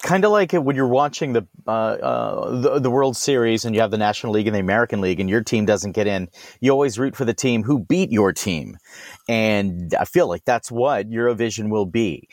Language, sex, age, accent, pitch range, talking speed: English, male, 40-59, American, 115-140 Hz, 235 wpm